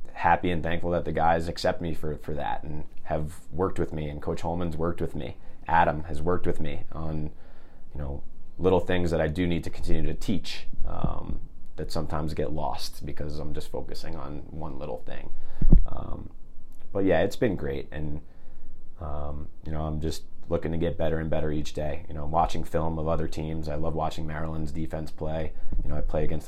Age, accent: 30-49, American